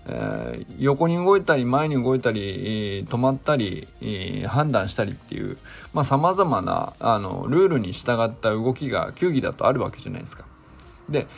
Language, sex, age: Japanese, male, 20-39